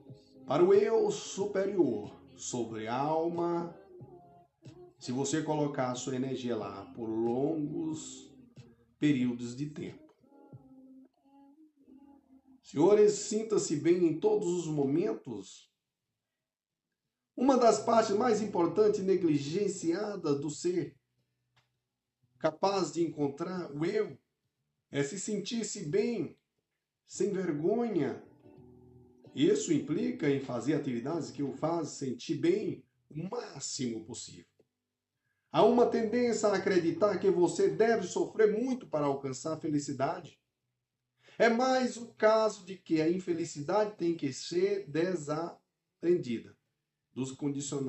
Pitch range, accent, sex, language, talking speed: 140-215 Hz, Brazilian, male, Portuguese, 105 wpm